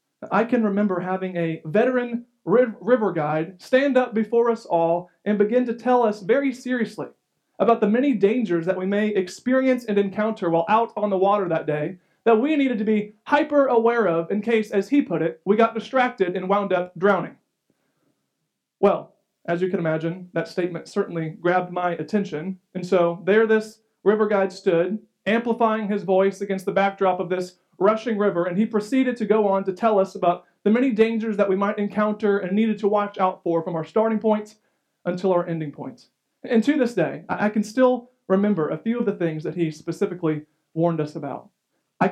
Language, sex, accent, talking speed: English, male, American, 195 wpm